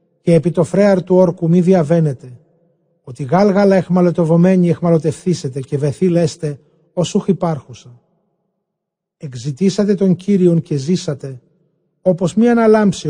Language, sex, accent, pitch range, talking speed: Greek, male, native, 155-180 Hz, 120 wpm